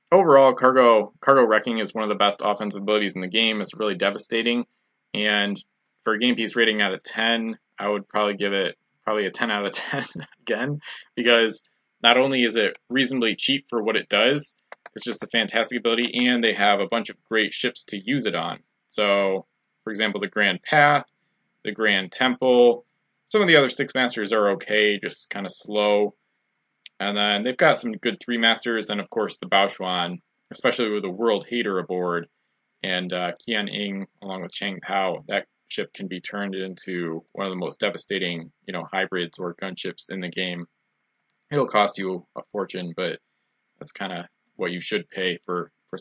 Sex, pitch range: male, 95-115 Hz